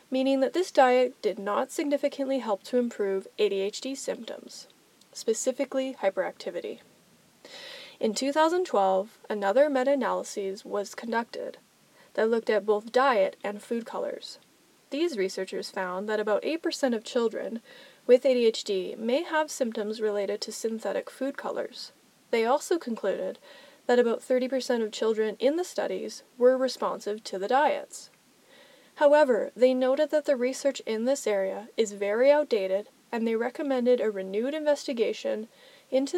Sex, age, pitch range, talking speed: female, 20-39, 210-280 Hz, 135 wpm